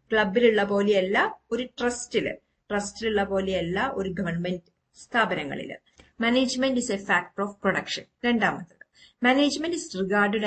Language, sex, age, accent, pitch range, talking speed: Malayalam, female, 50-69, native, 185-215 Hz, 105 wpm